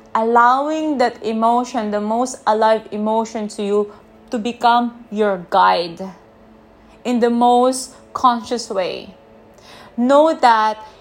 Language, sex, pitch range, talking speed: English, female, 205-245 Hz, 110 wpm